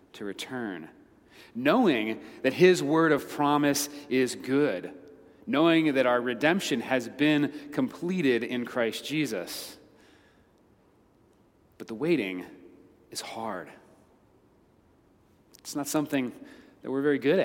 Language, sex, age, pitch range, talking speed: English, male, 30-49, 125-155 Hz, 110 wpm